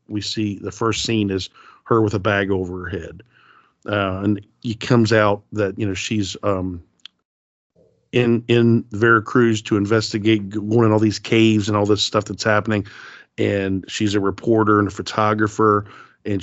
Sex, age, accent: male, 50-69, American